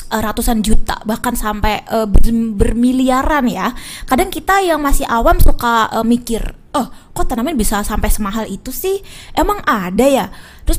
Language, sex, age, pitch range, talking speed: Indonesian, female, 20-39, 215-280 Hz, 150 wpm